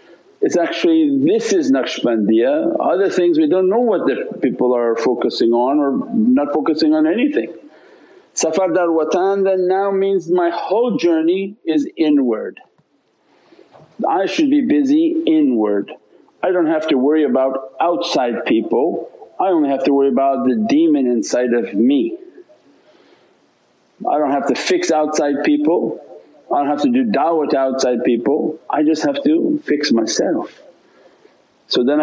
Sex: male